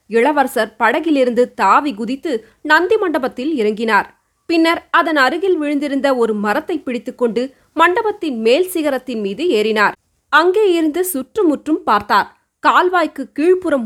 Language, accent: Tamil, native